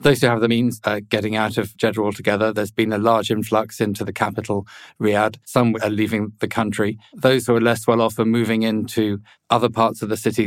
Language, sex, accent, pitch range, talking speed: English, male, British, 105-120 Hz, 225 wpm